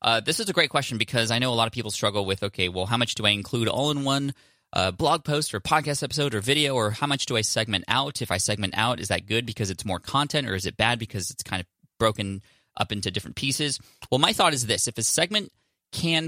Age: 20-39